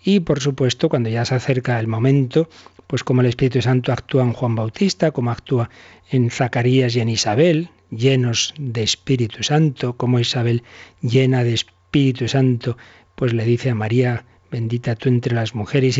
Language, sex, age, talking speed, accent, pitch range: Spanish, male, 40-59, 170 wpm, Spanish, 115-135 Hz